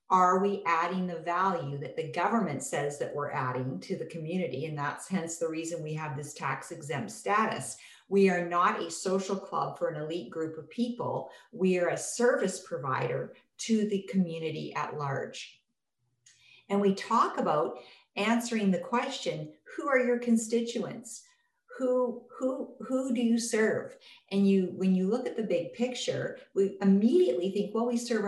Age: 50-69